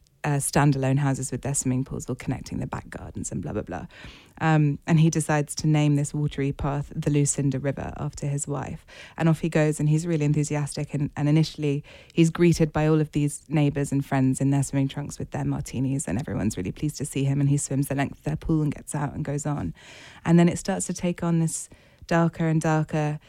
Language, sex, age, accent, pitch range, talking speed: English, female, 20-39, British, 140-160 Hz, 230 wpm